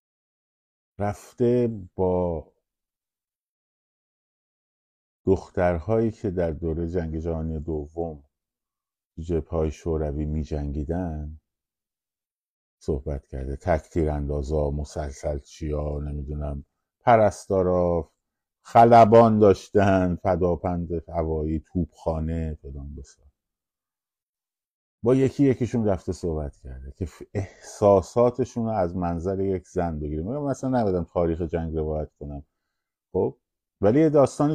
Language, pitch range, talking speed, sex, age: Persian, 80-100 Hz, 90 wpm, male, 50-69